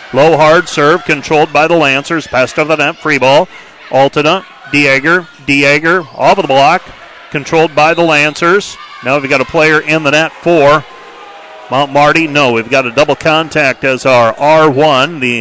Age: 40-59